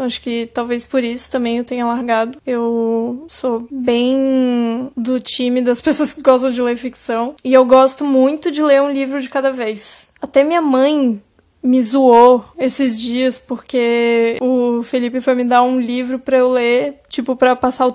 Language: Portuguese